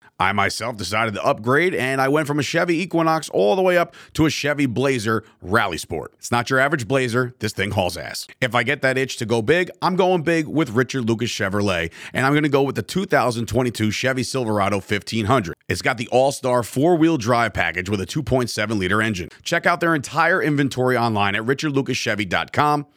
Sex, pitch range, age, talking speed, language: male, 115-150 Hz, 40-59, 200 wpm, English